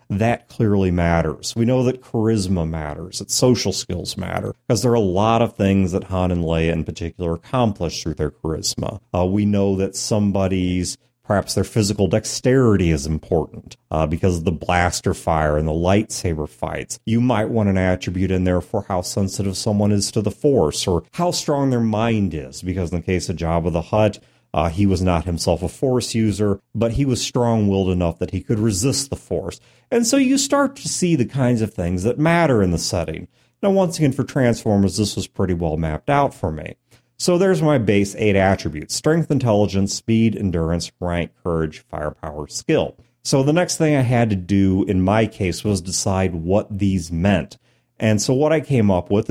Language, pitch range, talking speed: English, 90-115 Hz, 200 wpm